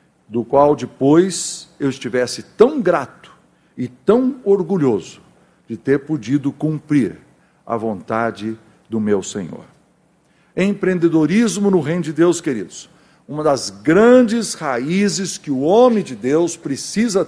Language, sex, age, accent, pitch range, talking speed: Portuguese, male, 60-79, Brazilian, 135-190 Hz, 120 wpm